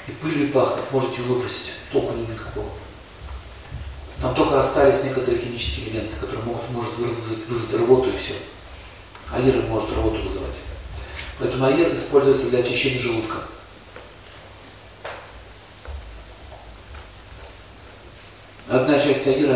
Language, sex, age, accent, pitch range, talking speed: Russian, male, 40-59, native, 110-150 Hz, 105 wpm